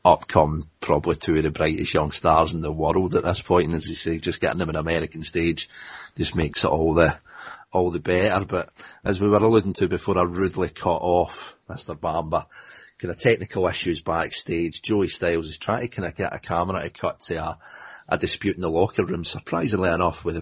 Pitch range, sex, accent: 85-100 Hz, male, British